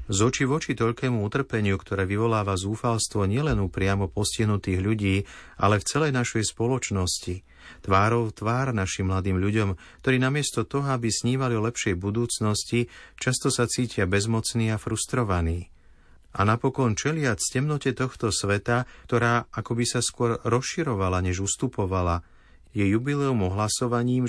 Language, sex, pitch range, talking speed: Slovak, male, 95-120 Hz, 135 wpm